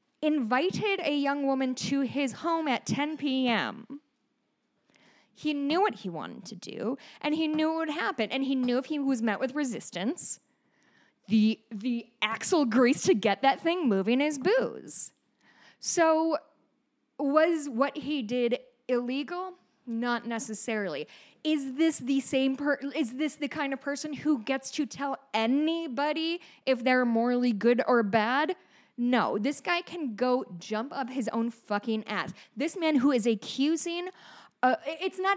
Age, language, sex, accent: 10-29, English, female, American